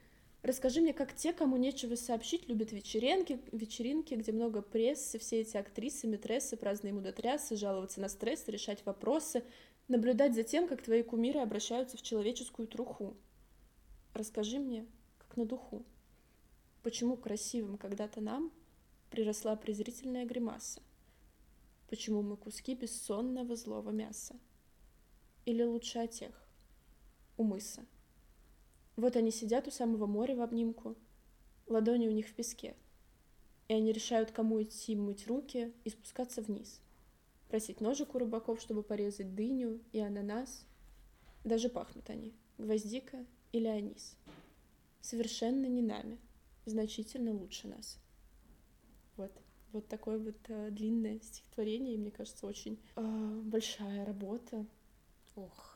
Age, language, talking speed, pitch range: 20-39, Russian, 125 wpm, 210-240 Hz